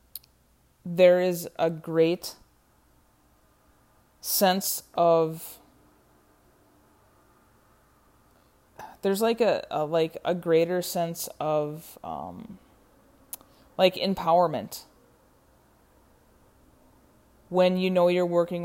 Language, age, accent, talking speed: English, 20-39, American, 75 wpm